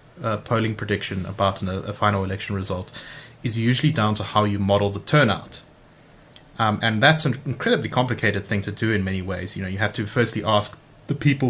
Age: 20-39